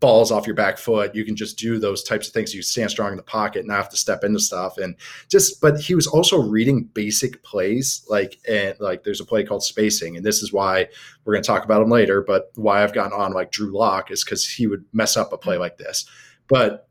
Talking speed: 260 wpm